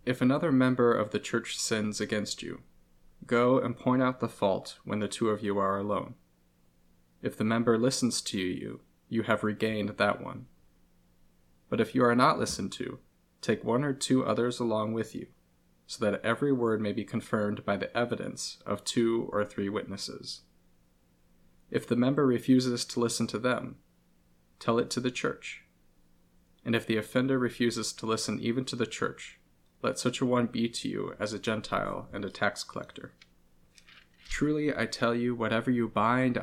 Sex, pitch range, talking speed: male, 90-120 Hz, 180 wpm